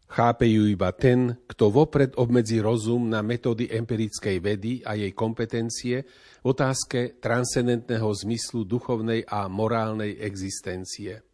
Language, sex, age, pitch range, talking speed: Slovak, male, 40-59, 105-125 Hz, 115 wpm